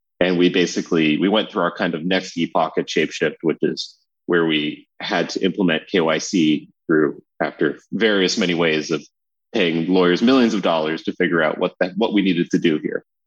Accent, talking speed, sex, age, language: American, 195 wpm, male, 30-49, English